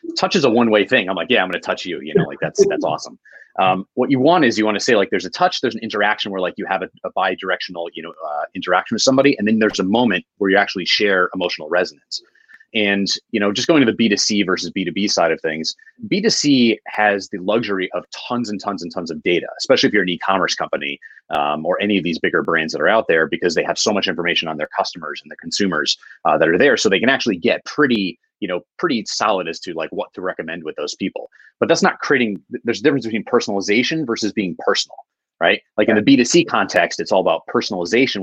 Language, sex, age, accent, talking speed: English, male, 30-49, American, 260 wpm